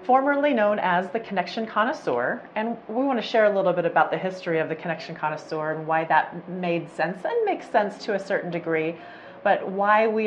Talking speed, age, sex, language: 210 wpm, 30-49, female, English